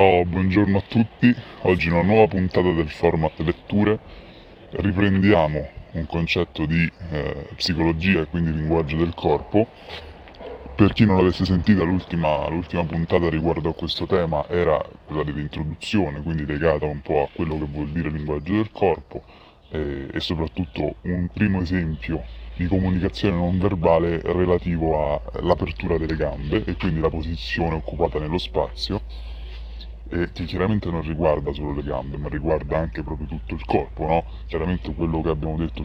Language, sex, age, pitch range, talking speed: Italian, female, 20-39, 80-95 Hz, 150 wpm